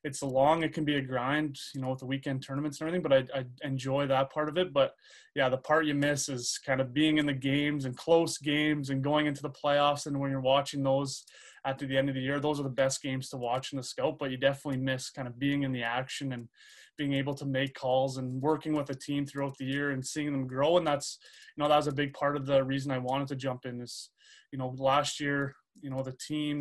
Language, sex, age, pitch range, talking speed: English, male, 20-39, 130-145 Hz, 270 wpm